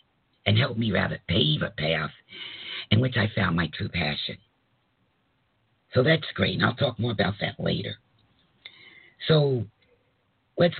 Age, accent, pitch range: 50-69, American, 105-130 Hz